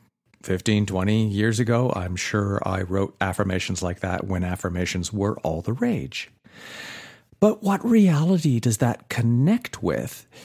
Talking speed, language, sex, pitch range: 140 wpm, English, male, 100-140 Hz